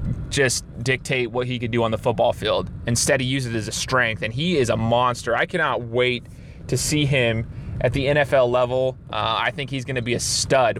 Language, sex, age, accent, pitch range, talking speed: English, male, 20-39, American, 115-135 Hz, 230 wpm